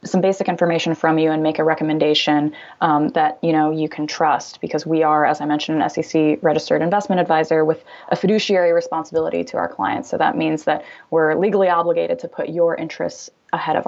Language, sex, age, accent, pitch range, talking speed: English, female, 20-39, American, 160-185 Hz, 205 wpm